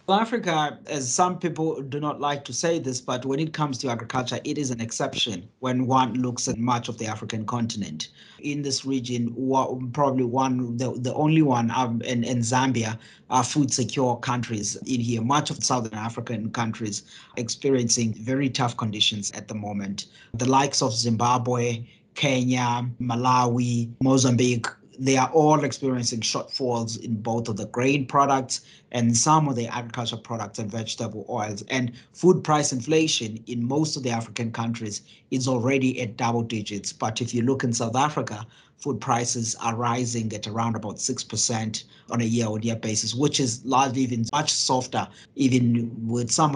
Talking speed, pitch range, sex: 170 wpm, 115-130 Hz, male